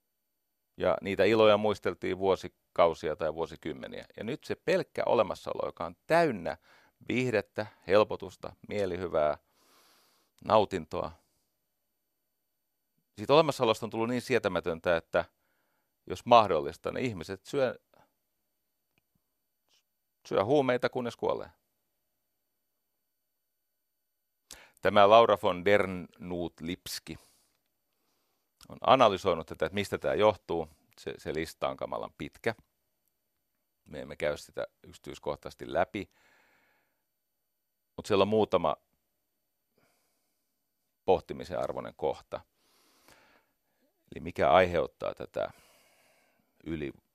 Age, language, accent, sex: 40-59, Finnish, native, male